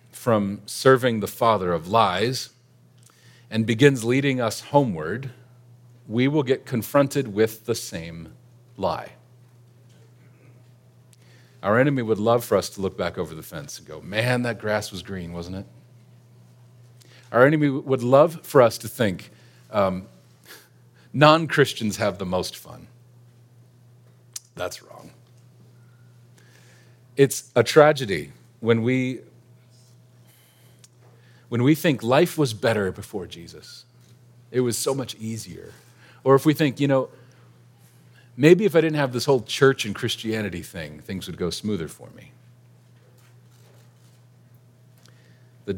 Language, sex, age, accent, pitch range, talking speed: English, male, 40-59, American, 105-125 Hz, 130 wpm